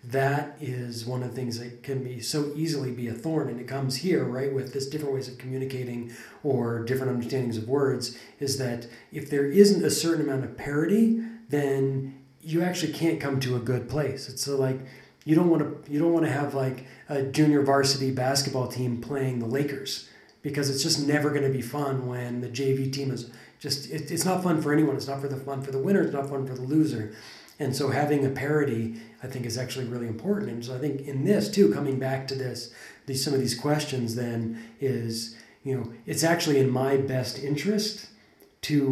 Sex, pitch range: male, 130-150 Hz